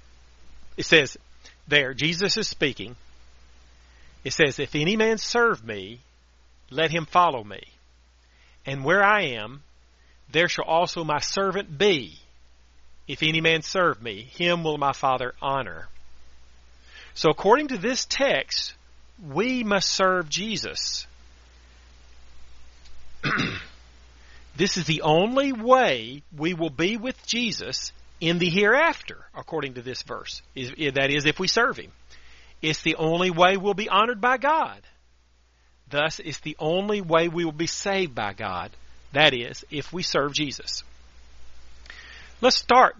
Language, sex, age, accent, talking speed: English, male, 40-59, American, 135 wpm